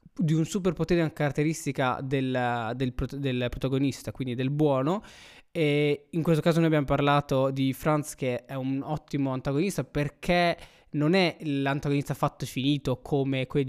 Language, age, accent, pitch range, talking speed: Italian, 20-39, native, 135-165 Hz, 160 wpm